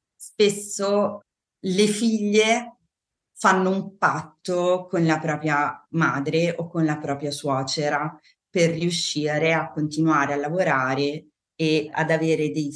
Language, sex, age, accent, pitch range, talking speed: Italian, female, 30-49, native, 155-195 Hz, 120 wpm